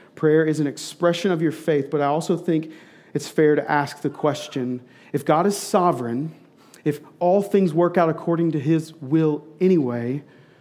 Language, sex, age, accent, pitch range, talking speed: English, male, 40-59, American, 150-175 Hz, 175 wpm